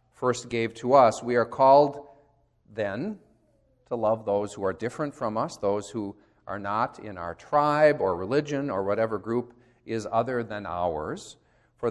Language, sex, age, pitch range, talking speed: English, male, 40-59, 105-130 Hz, 165 wpm